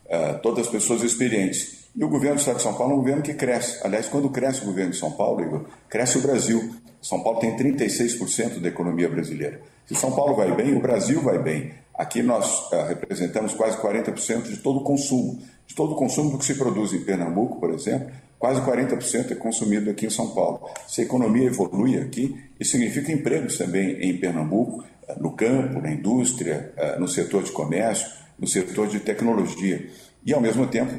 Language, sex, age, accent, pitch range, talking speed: Portuguese, male, 50-69, Brazilian, 105-130 Hz, 190 wpm